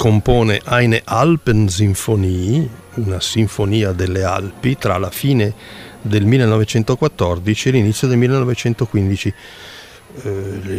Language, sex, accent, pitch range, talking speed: Italian, male, native, 95-120 Hz, 90 wpm